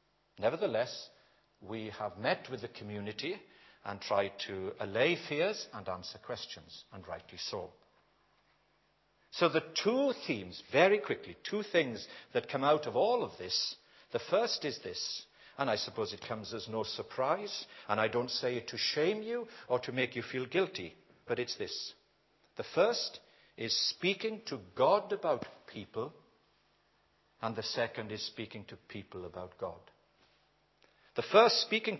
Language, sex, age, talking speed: English, male, 60-79, 155 wpm